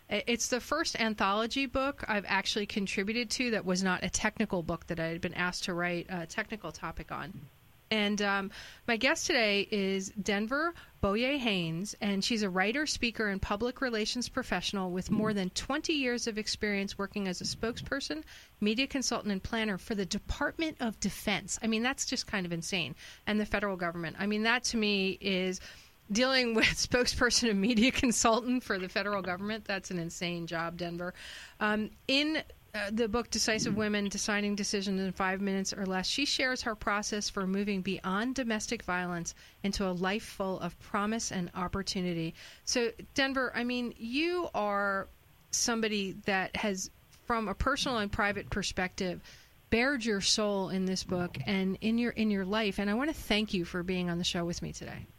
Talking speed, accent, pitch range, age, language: 180 wpm, American, 190-230 Hz, 30-49, English